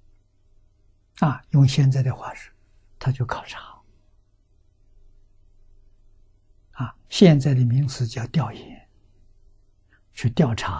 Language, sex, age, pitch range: Chinese, male, 60-79, 100-125 Hz